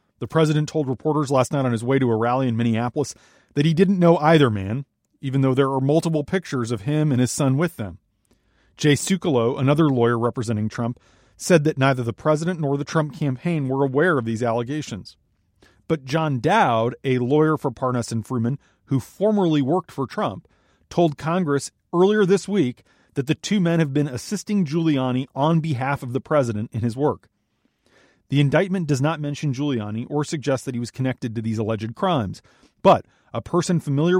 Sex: male